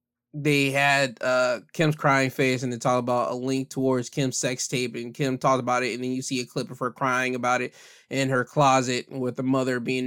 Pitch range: 130-195 Hz